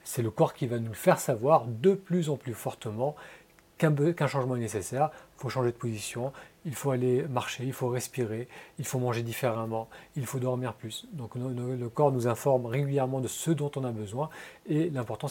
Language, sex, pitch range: French, male, 110-140 Hz